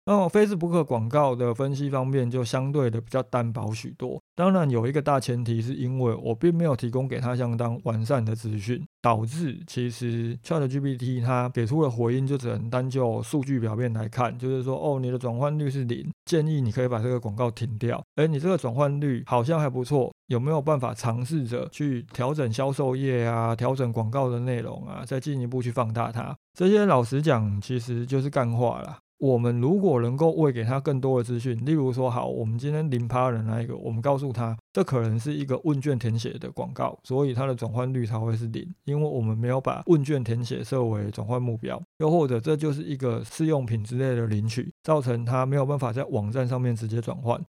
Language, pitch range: Chinese, 120-145 Hz